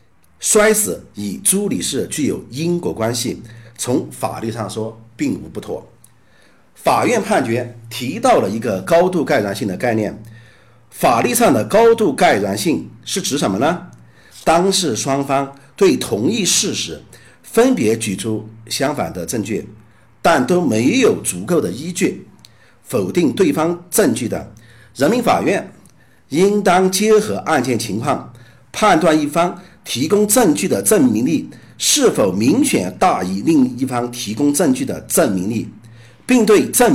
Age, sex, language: 50-69, male, Chinese